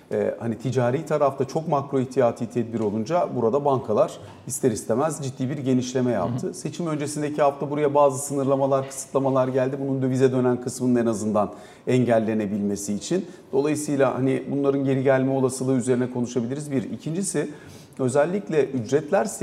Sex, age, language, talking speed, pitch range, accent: male, 40-59, Turkish, 135 wpm, 130-175 Hz, native